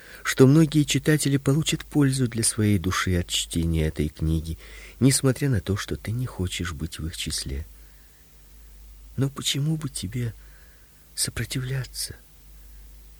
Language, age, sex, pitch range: Russian, 50-69, male, 75-125 Hz